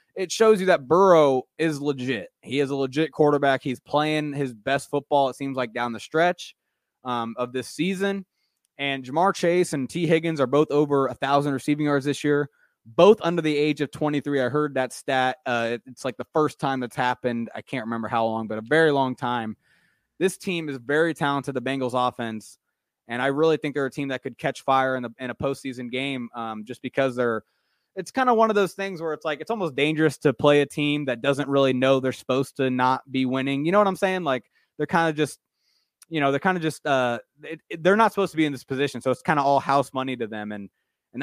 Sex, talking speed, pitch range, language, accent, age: male, 235 wpm, 130-155 Hz, English, American, 20-39